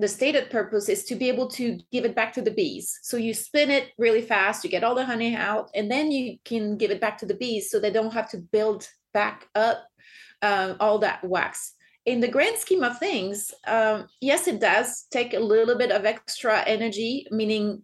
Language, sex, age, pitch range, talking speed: English, female, 30-49, 210-260 Hz, 220 wpm